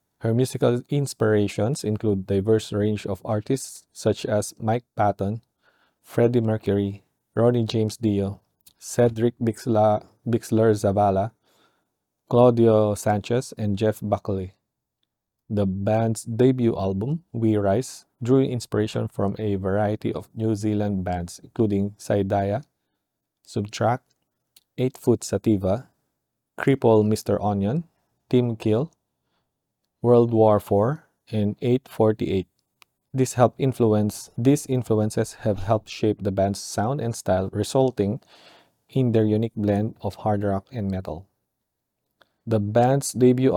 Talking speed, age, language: 115 wpm, 20-39, English